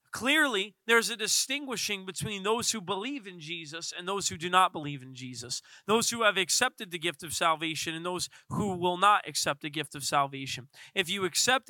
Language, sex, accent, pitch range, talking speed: English, male, American, 165-230 Hz, 200 wpm